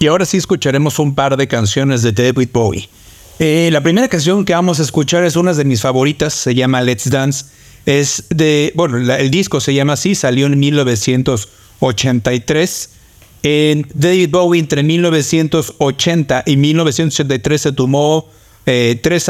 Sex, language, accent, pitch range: male, Spanish, Mexican, 130-160 Hz